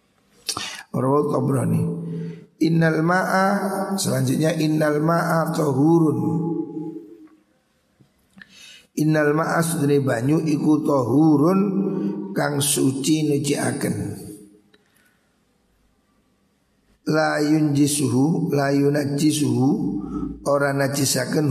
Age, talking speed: 50-69, 45 wpm